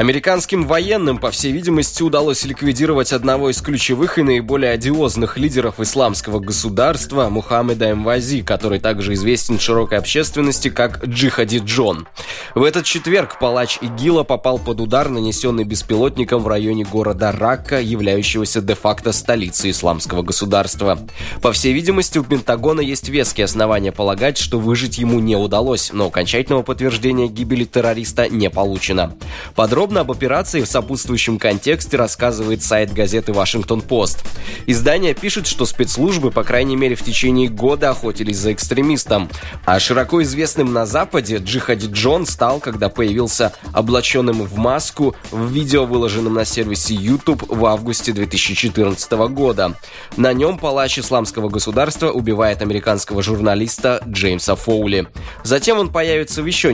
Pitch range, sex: 105-135 Hz, male